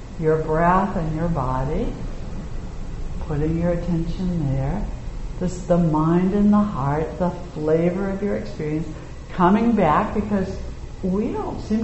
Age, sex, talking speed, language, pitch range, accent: 60-79, female, 130 wpm, English, 130-180 Hz, American